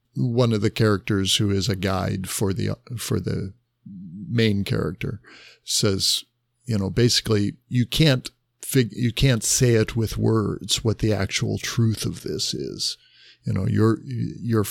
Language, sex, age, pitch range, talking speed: English, male, 50-69, 100-120 Hz, 155 wpm